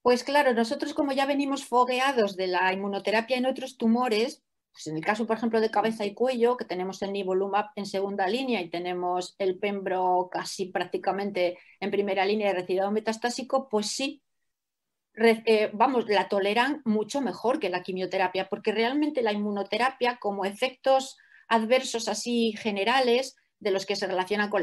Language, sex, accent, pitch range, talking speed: English, female, Spanish, 185-245 Hz, 160 wpm